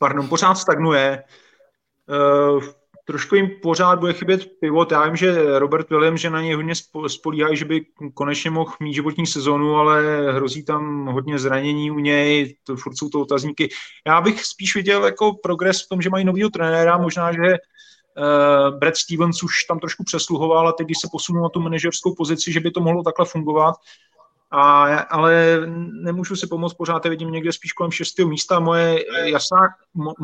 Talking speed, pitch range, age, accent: 180 wpm, 145-170 Hz, 30-49, native